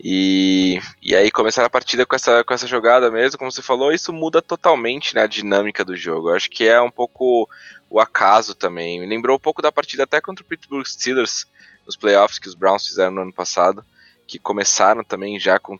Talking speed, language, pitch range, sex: 215 wpm, English, 100-135 Hz, male